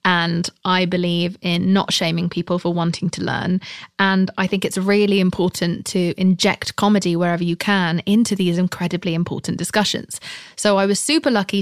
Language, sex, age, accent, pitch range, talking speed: English, female, 20-39, British, 180-205 Hz, 170 wpm